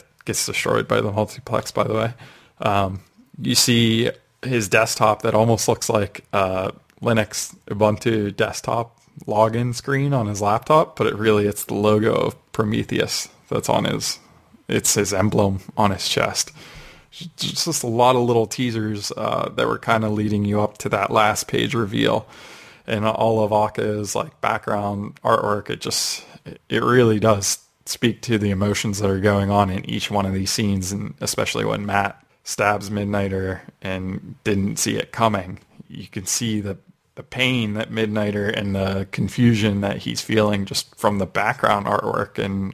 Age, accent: 20-39, American